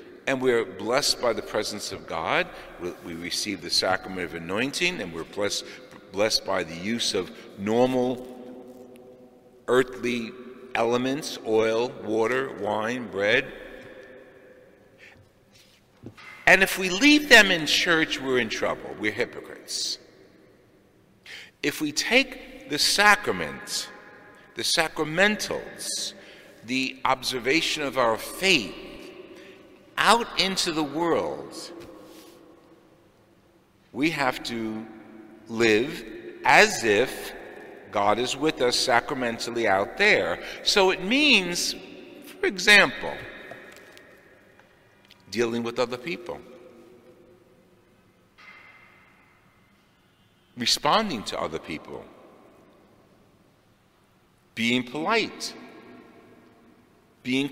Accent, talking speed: American, 90 wpm